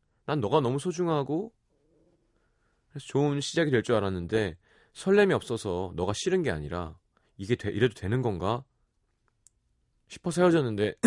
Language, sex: Korean, male